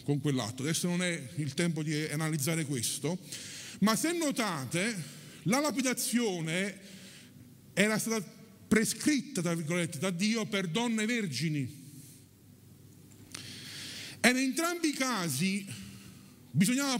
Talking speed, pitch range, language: 110 wpm, 145-240 Hz, Italian